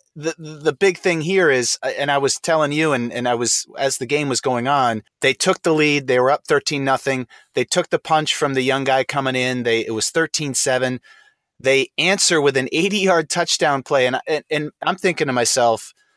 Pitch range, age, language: 130-170 Hz, 30-49, English